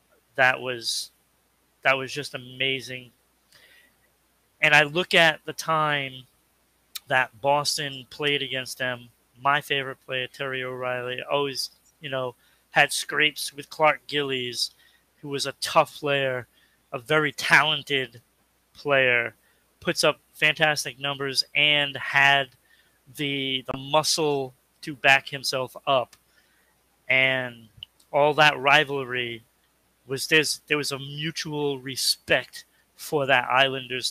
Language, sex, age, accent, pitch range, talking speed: English, male, 30-49, American, 125-145 Hz, 115 wpm